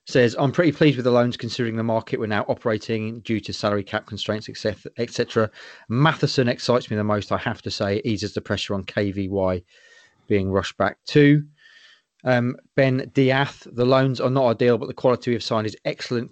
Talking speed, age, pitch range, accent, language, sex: 195 wpm, 30-49, 105-130 Hz, British, English, male